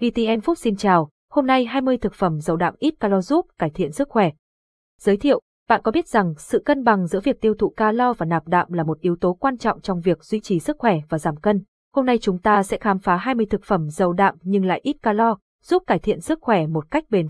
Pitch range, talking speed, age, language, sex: 185-235 Hz, 255 wpm, 20-39, Vietnamese, female